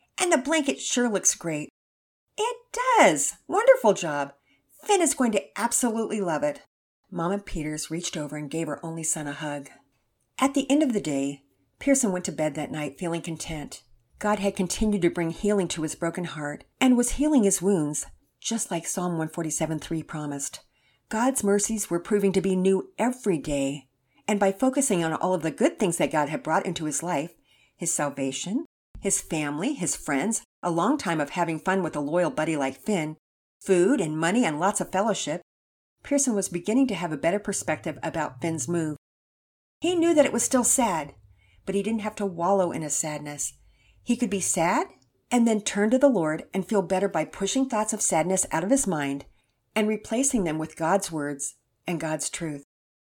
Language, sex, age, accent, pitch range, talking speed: English, female, 50-69, American, 155-215 Hz, 195 wpm